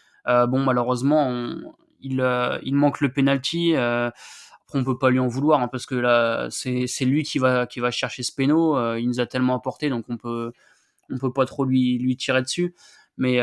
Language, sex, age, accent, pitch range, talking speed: French, male, 20-39, French, 120-135 Hz, 230 wpm